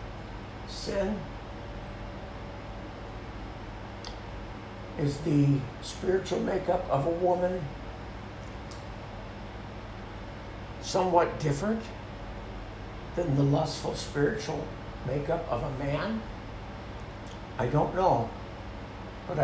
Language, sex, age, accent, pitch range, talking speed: English, male, 60-79, American, 105-145 Hz, 70 wpm